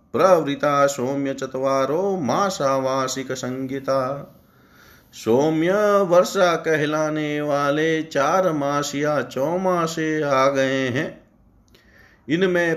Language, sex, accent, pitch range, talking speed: Hindi, male, native, 135-185 Hz, 75 wpm